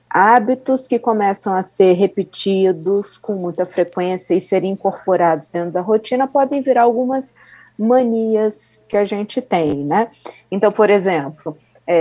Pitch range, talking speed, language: 165-205 Hz, 135 wpm, Portuguese